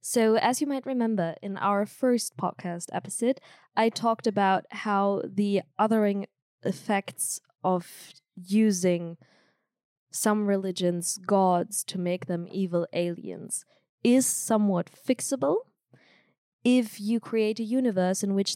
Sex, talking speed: female, 120 wpm